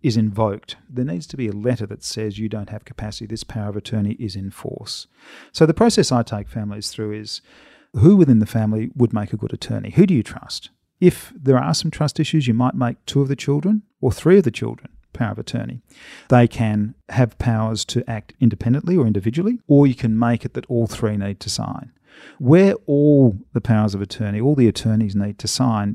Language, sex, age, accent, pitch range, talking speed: English, male, 40-59, Australian, 105-130 Hz, 220 wpm